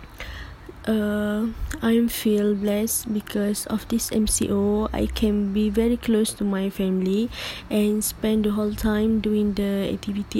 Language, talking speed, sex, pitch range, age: English, 140 wpm, female, 195-215 Hz, 20-39